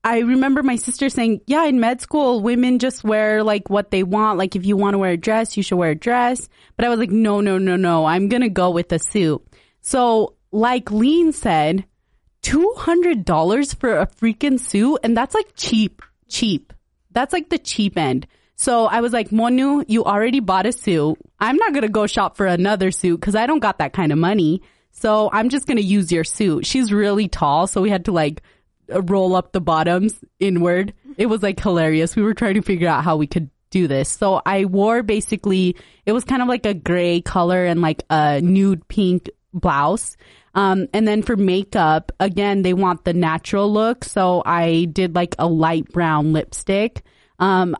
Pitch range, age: 175-230 Hz, 20-39